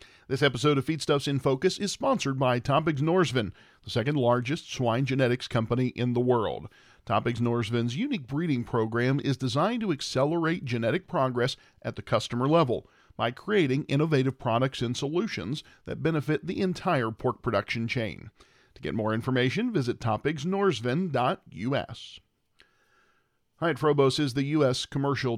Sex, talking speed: male, 140 wpm